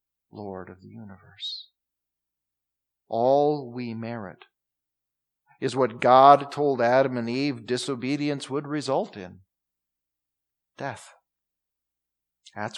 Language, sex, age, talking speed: English, male, 40-59, 95 wpm